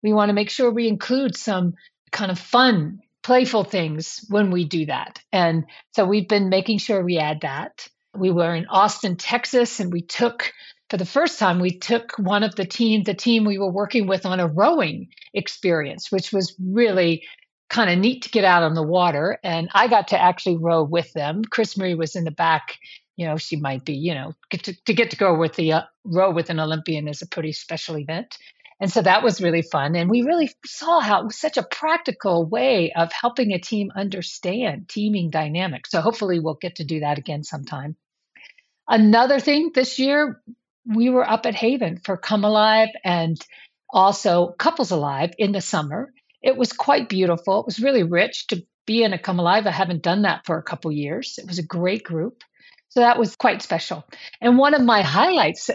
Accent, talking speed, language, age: American, 210 wpm, English, 50-69